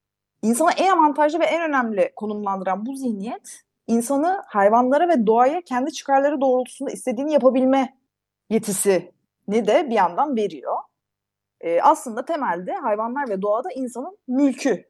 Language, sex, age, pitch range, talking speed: Turkish, female, 30-49, 195-295 Hz, 130 wpm